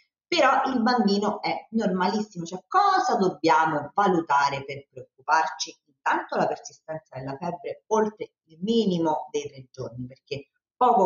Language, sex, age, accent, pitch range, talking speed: Italian, female, 40-59, native, 155-220 Hz, 130 wpm